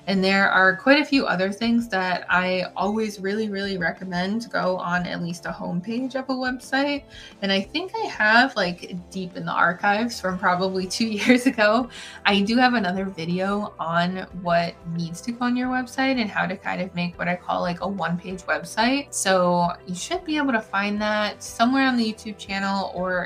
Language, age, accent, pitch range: English, 20-39, American, 175-220 Hz